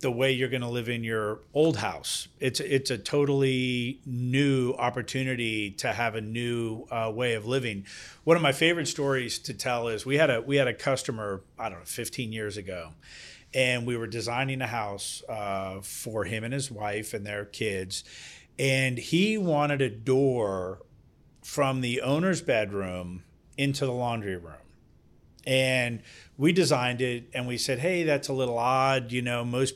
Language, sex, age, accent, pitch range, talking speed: English, male, 40-59, American, 110-135 Hz, 175 wpm